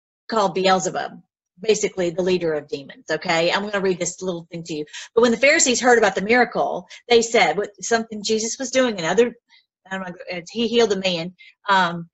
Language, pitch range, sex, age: English, 200-280 Hz, female, 40-59